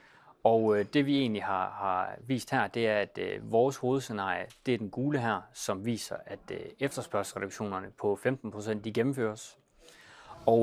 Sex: male